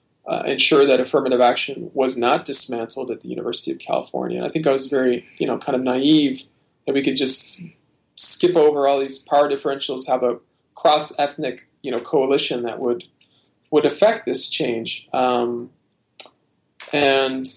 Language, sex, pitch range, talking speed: English, male, 130-155 Hz, 165 wpm